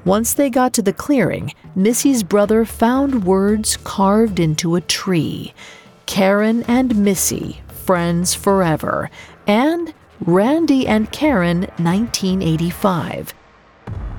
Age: 40-59